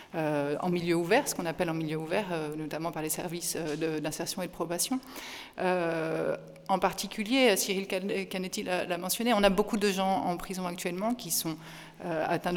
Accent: French